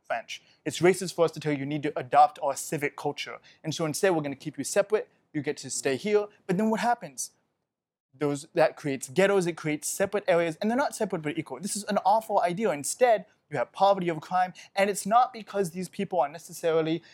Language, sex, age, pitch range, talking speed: English, male, 20-39, 150-195 Hz, 230 wpm